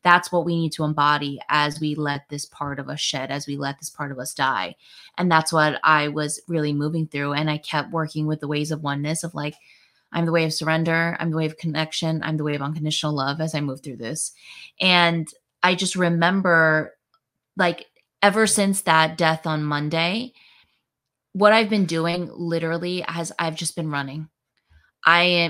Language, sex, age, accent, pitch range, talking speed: English, female, 20-39, American, 155-180 Hz, 200 wpm